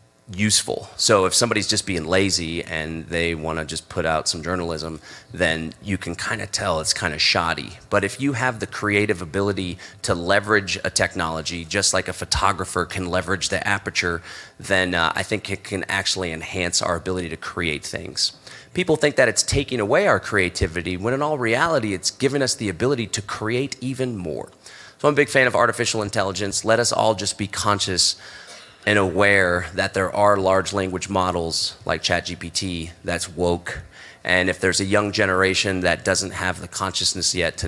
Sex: male